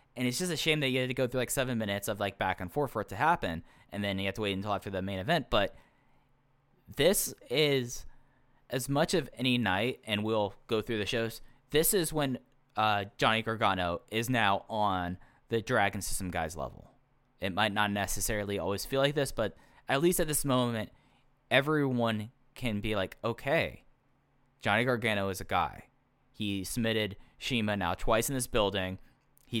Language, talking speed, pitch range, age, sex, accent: English, 195 wpm, 95-125 Hz, 10-29, male, American